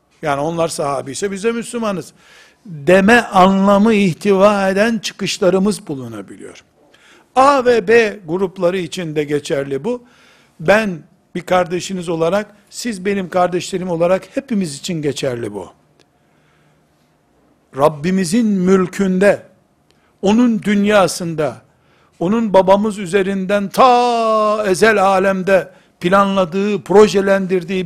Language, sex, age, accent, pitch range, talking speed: Turkish, male, 60-79, native, 180-205 Hz, 95 wpm